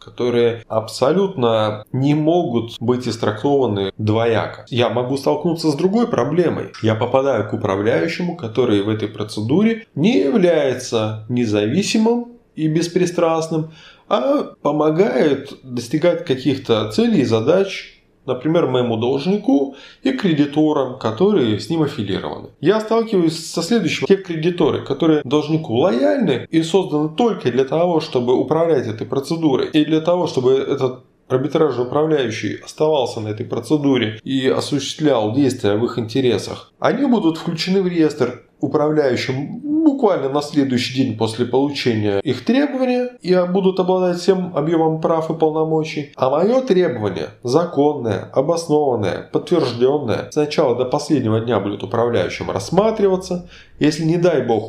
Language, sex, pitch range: Russian, male, 120-165 Hz